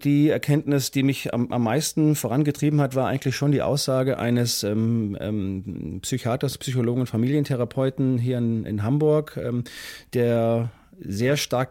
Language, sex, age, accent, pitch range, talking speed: German, male, 40-59, German, 105-130 Hz, 145 wpm